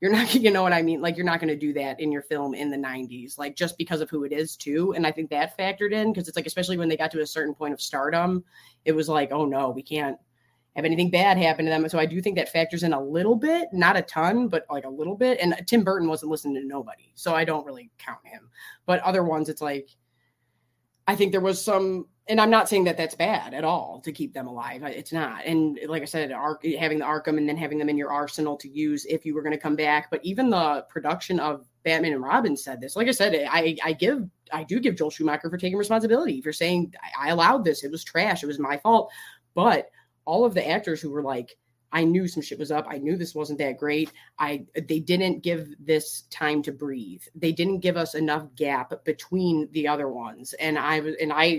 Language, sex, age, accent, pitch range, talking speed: English, female, 20-39, American, 145-175 Hz, 255 wpm